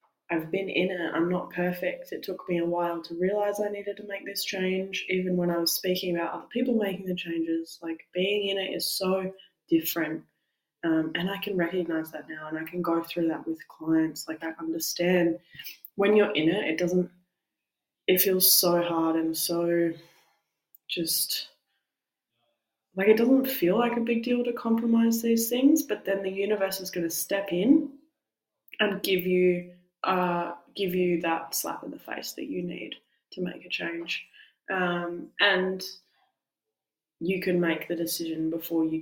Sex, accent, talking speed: female, Australian, 180 wpm